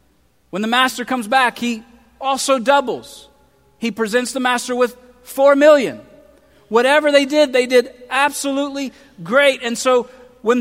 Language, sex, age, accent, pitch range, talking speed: English, male, 40-59, American, 205-265 Hz, 140 wpm